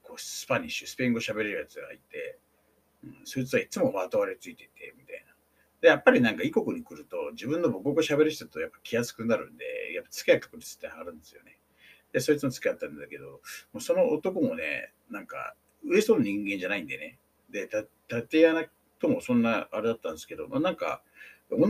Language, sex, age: Japanese, male, 60-79